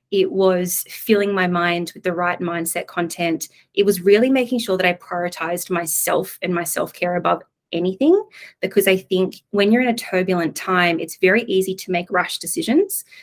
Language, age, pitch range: English, 20-39, 175-205 Hz